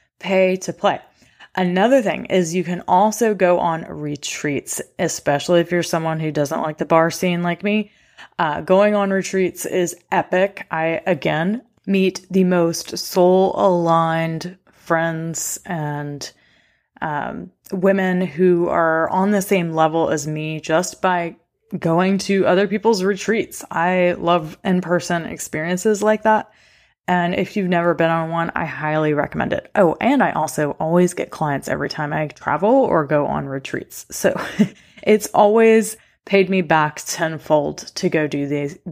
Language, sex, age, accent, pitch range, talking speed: English, female, 20-39, American, 160-195 Hz, 155 wpm